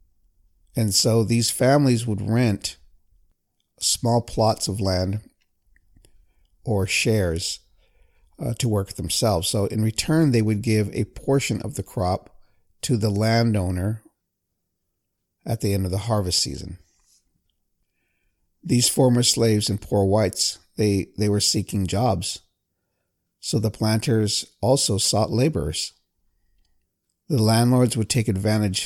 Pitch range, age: 90-110 Hz, 50-69